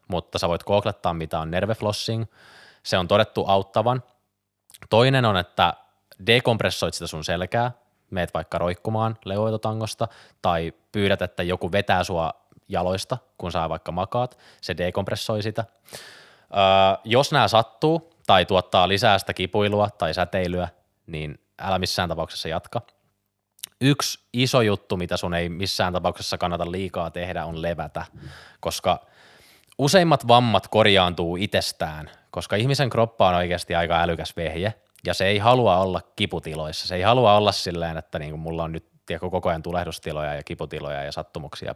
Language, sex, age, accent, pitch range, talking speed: Finnish, male, 20-39, native, 85-110 Hz, 145 wpm